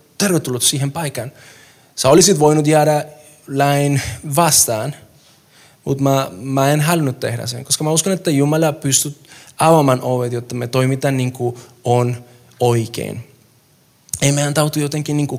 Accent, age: native, 20-39